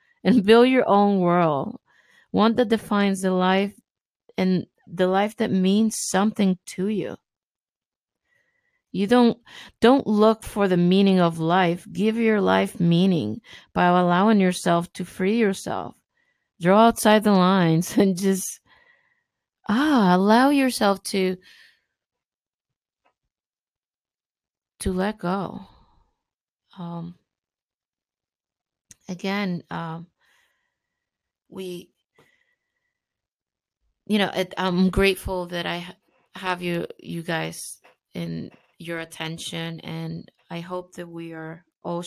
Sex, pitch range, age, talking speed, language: female, 170-215 Hz, 30-49, 105 wpm, English